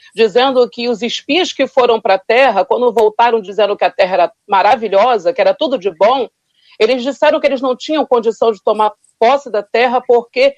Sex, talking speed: female, 200 wpm